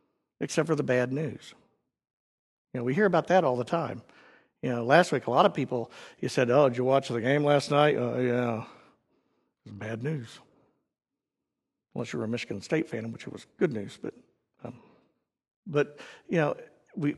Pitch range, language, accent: 125-170 Hz, English, American